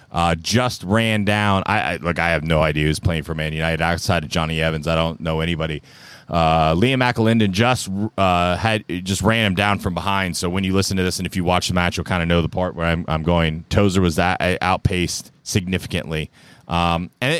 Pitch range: 85-110 Hz